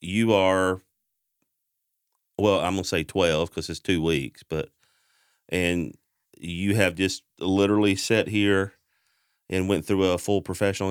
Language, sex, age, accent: English, male, 40-59, American